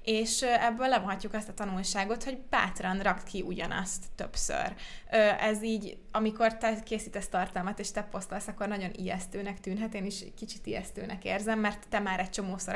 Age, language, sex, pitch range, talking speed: 20-39, Hungarian, female, 185-215 Hz, 165 wpm